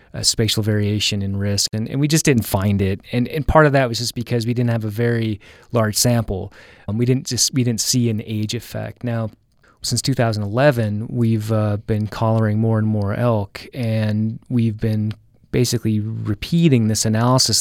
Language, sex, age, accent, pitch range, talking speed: English, male, 30-49, American, 110-125 Hz, 190 wpm